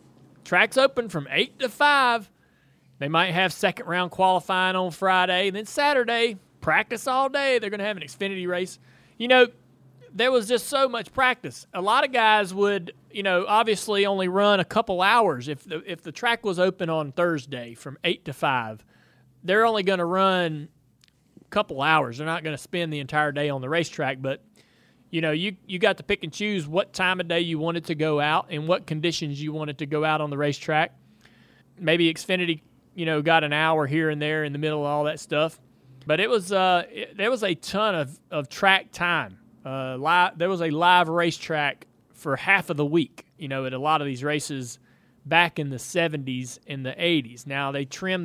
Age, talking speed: 30-49, 205 wpm